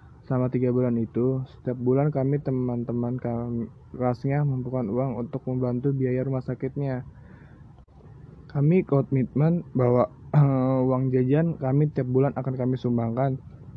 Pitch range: 120-145 Hz